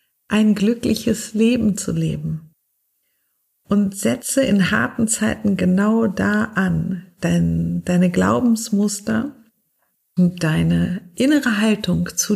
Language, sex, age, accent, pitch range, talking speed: German, female, 50-69, German, 175-220 Hz, 100 wpm